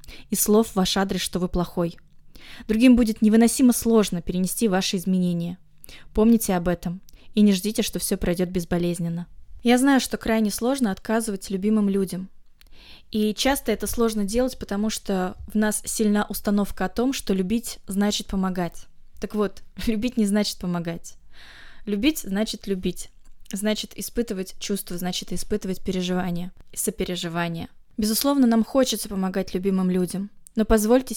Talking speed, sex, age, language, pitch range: 140 wpm, female, 20-39, Russian, 185-220 Hz